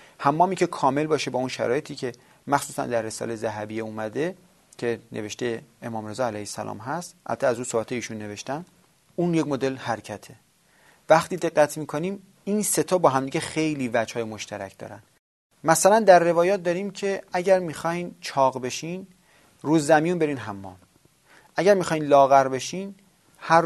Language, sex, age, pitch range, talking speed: Persian, male, 30-49, 120-170 Hz, 150 wpm